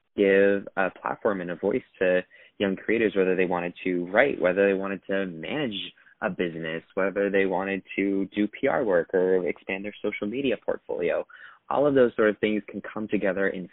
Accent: American